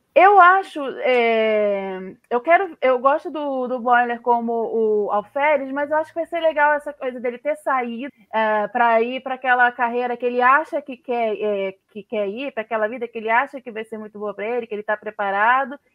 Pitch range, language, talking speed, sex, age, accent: 225-290 Hz, Portuguese, 195 wpm, female, 20-39, Brazilian